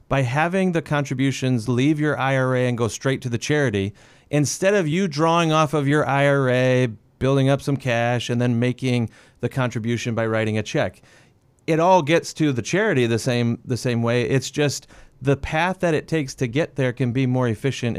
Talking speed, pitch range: 195 wpm, 120-145 Hz